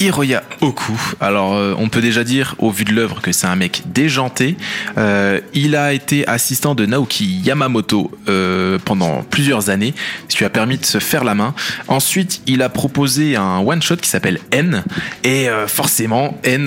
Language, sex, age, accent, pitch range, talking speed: French, male, 20-39, French, 110-150 Hz, 185 wpm